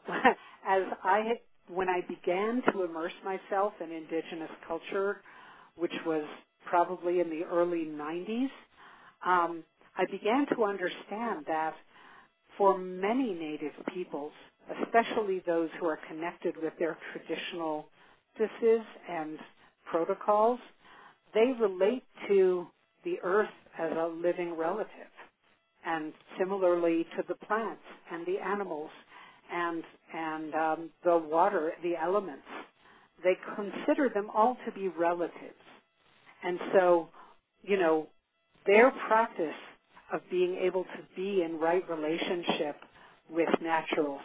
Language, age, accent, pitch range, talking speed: English, 50-69, American, 165-210 Hz, 115 wpm